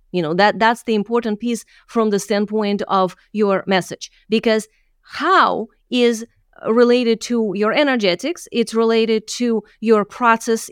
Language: English